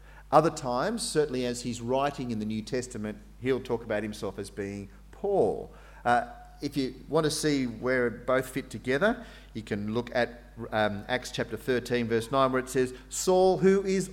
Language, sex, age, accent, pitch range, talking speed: English, male, 40-59, Australian, 110-150 Hz, 185 wpm